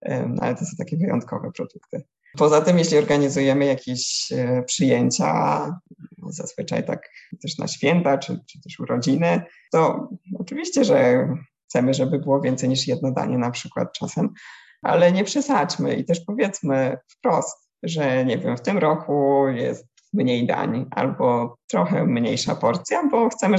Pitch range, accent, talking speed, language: 130-185 Hz, Polish, 140 wpm, English